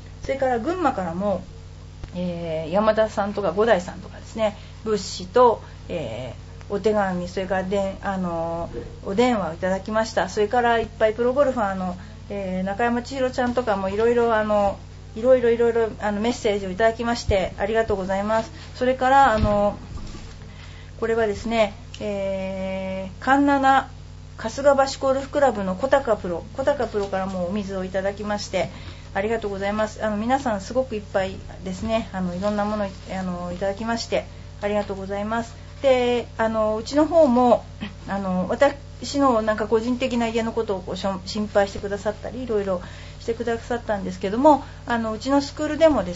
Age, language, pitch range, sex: 40-59, Japanese, 195-235 Hz, female